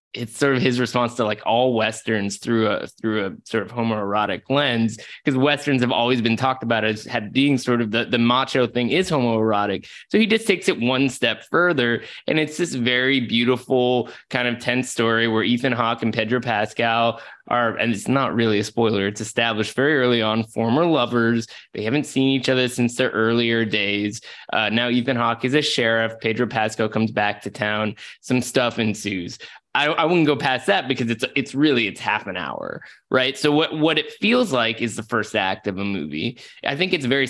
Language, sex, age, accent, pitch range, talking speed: English, male, 20-39, American, 110-130 Hz, 205 wpm